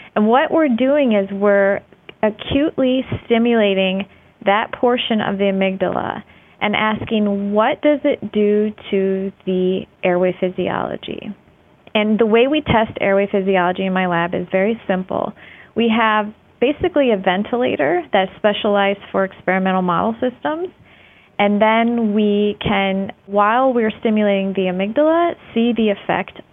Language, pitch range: English, 190-235 Hz